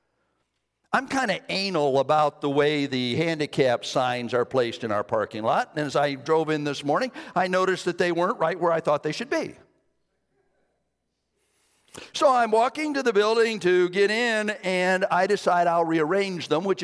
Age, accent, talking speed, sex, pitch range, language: 50-69, American, 180 wpm, male, 155-245 Hz, English